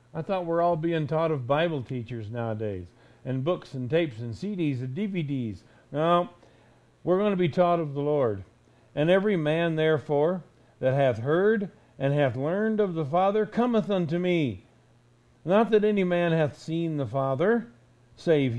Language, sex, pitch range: English, male, 125-175 Hz